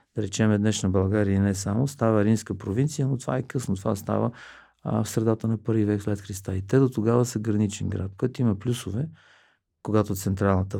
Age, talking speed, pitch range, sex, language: 50-69, 195 wpm, 100-120 Hz, male, Bulgarian